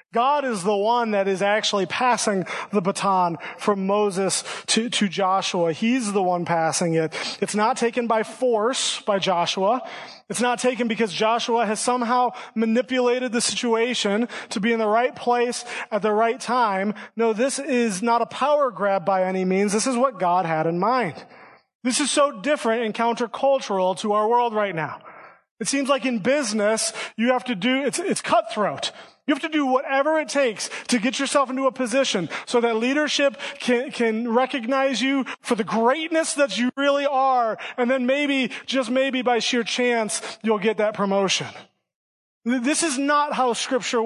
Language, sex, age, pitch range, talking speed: English, male, 30-49, 215-265 Hz, 180 wpm